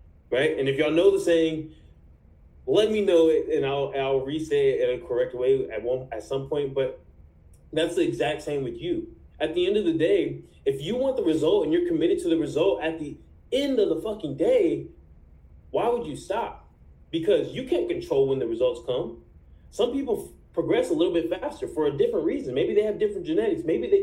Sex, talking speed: male, 215 wpm